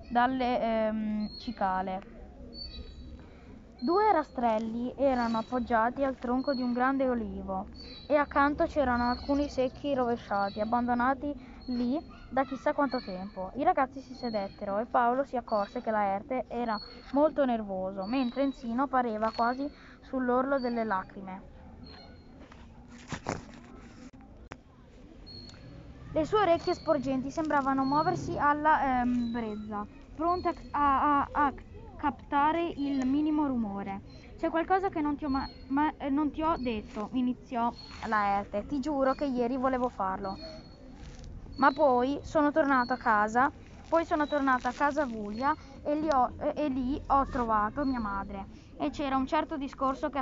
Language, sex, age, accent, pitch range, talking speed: Italian, female, 20-39, native, 225-285 Hz, 135 wpm